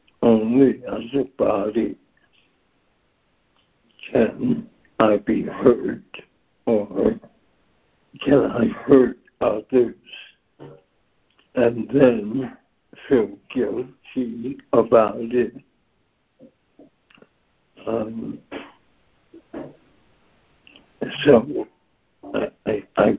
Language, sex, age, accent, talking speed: English, male, 60-79, American, 60 wpm